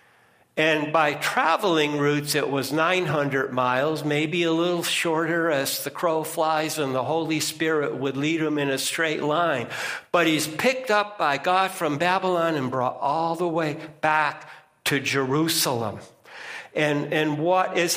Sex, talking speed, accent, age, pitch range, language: male, 155 wpm, American, 60-79, 140-175 Hz, English